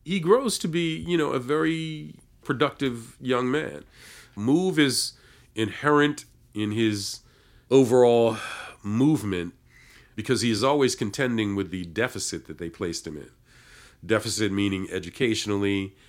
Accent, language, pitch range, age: American, English, 95-125 Hz, 50-69